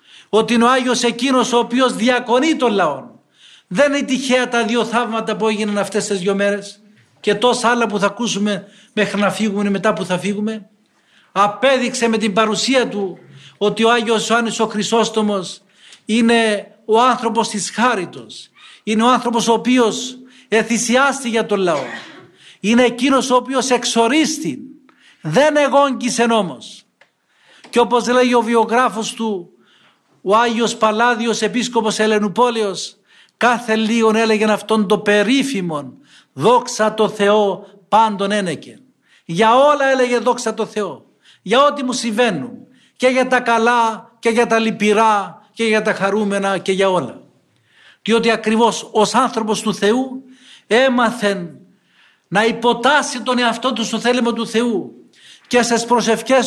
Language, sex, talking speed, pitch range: Greek, male, 140 wpm, 210-245 Hz